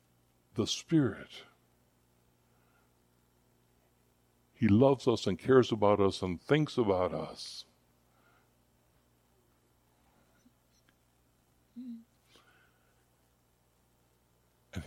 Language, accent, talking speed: English, American, 55 wpm